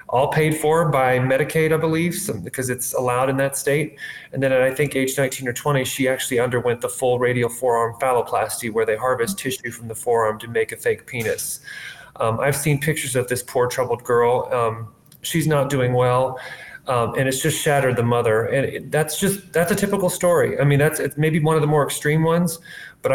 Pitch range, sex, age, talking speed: 120-155 Hz, male, 30-49, 215 wpm